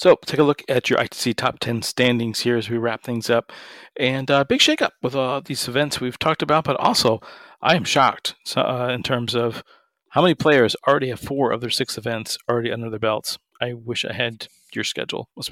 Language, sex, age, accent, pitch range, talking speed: English, male, 40-59, American, 115-140 Hz, 220 wpm